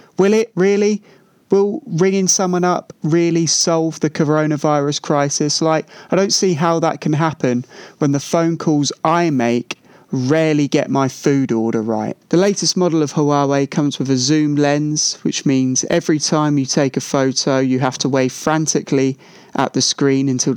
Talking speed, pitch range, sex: 170 wpm, 135-165 Hz, male